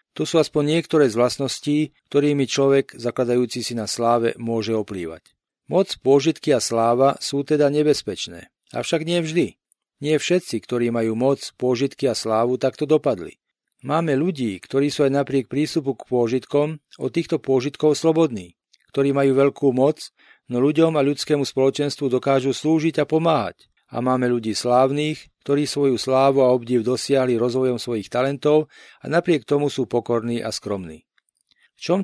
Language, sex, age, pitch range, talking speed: Slovak, male, 40-59, 125-150 Hz, 155 wpm